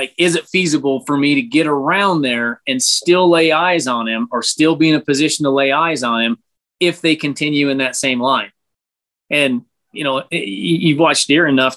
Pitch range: 125-160 Hz